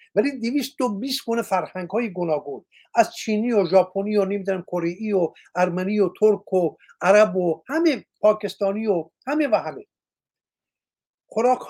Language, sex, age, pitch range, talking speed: Persian, male, 50-69, 185-235 Hz, 140 wpm